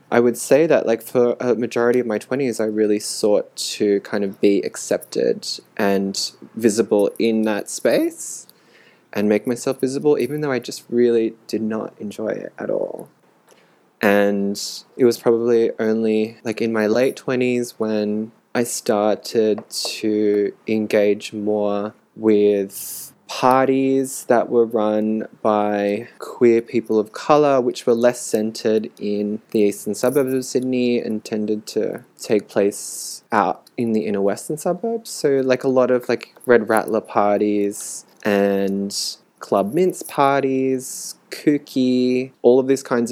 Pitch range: 105-125 Hz